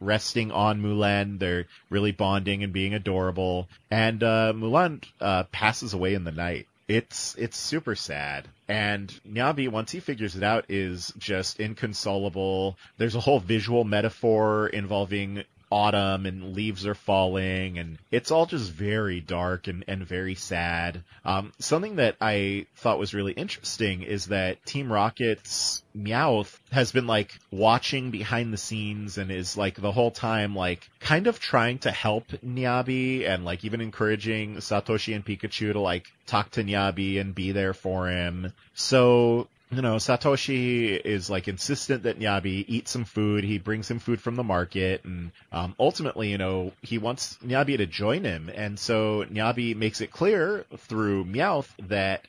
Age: 30-49